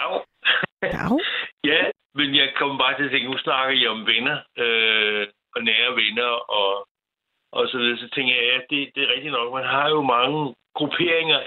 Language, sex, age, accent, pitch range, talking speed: Danish, male, 60-79, native, 120-135 Hz, 180 wpm